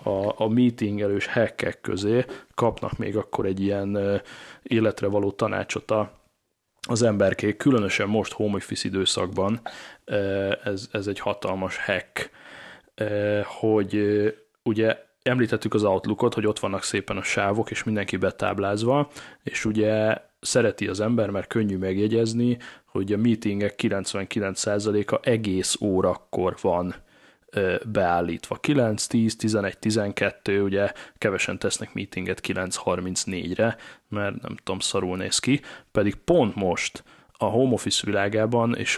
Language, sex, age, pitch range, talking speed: Hungarian, male, 20-39, 95-115 Hz, 120 wpm